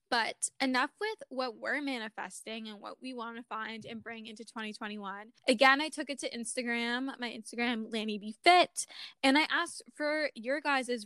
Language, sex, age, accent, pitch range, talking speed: English, female, 10-29, American, 225-265 Hz, 175 wpm